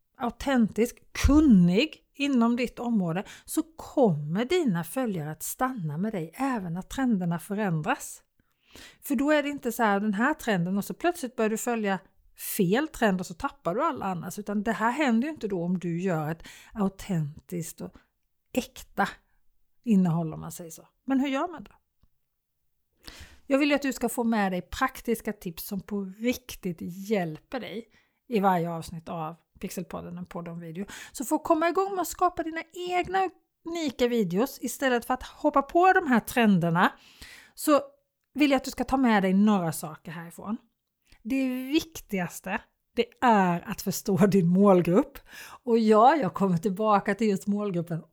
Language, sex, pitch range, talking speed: Swedish, female, 185-260 Hz, 170 wpm